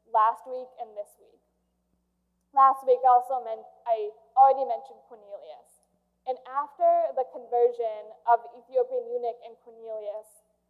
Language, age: English, 10-29